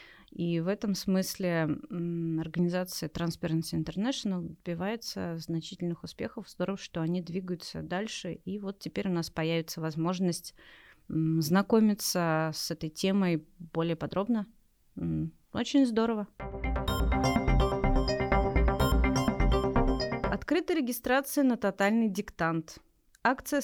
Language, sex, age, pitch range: Russian, female, 30-49, 165-230 Hz